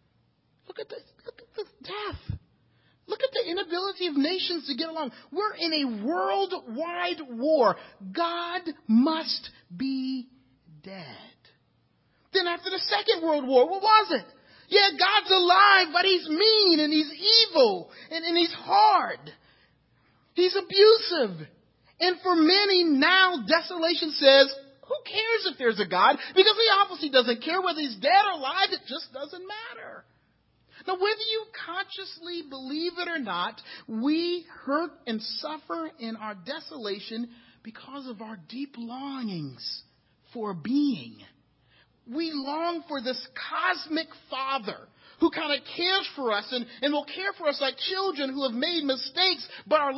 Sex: male